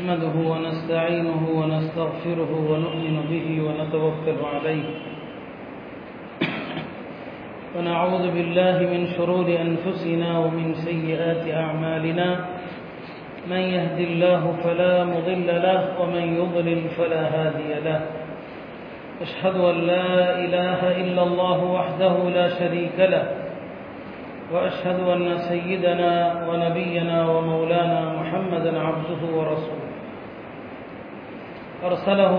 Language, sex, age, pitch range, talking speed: Tamil, male, 40-59, 165-180 Hz, 85 wpm